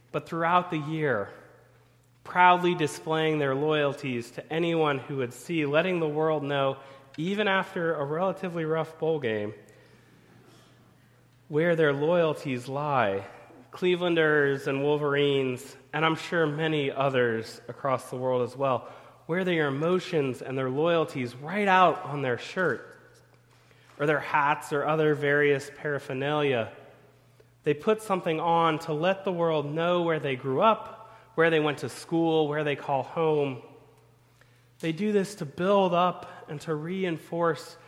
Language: English